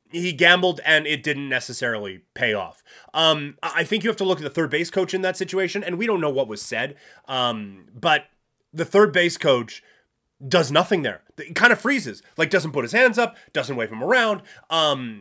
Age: 30-49